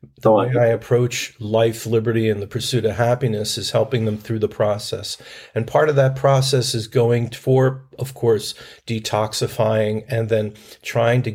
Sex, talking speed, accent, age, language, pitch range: male, 170 wpm, American, 50-69, English, 110-135 Hz